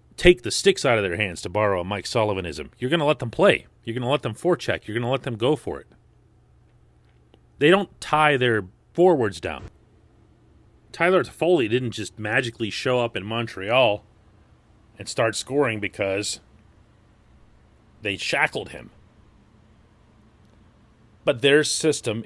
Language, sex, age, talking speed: English, male, 40-59, 155 wpm